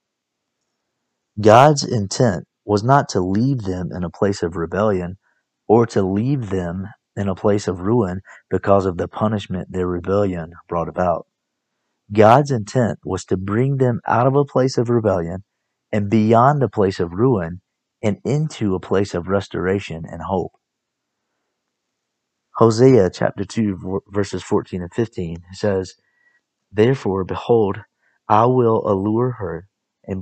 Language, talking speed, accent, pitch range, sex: English, 140 wpm, American, 95-115 Hz, male